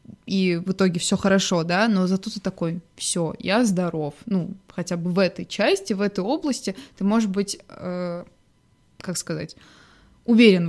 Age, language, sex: 20-39, Russian, female